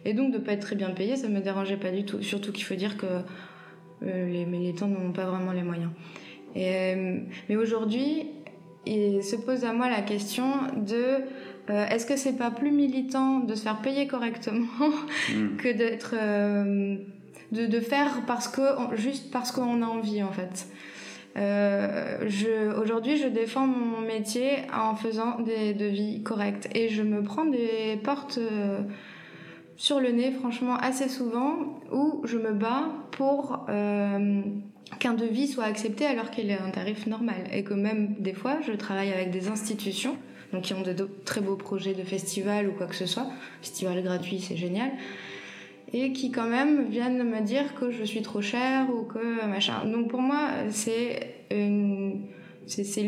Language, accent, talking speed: French, French, 175 wpm